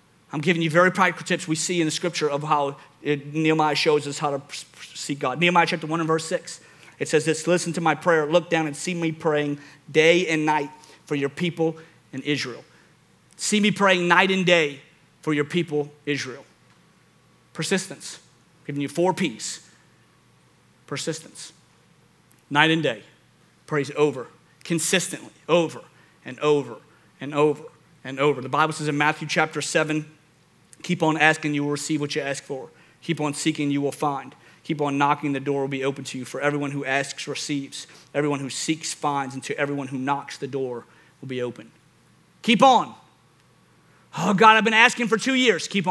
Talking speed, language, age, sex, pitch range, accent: 180 wpm, English, 40-59, male, 145-185 Hz, American